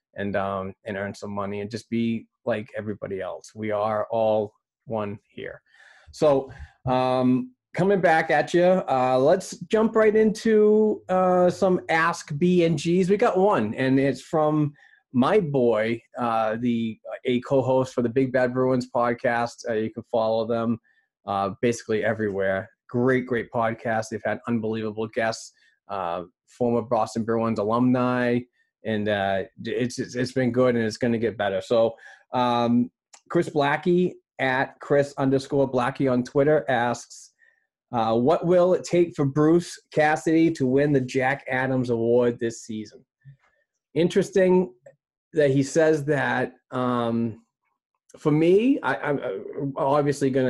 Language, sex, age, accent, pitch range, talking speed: English, male, 30-49, American, 115-150 Hz, 145 wpm